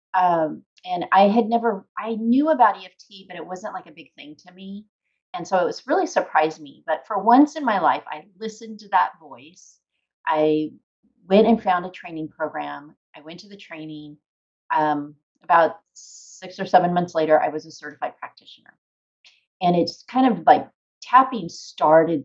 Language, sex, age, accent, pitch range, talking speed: English, female, 30-49, American, 155-200 Hz, 180 wpm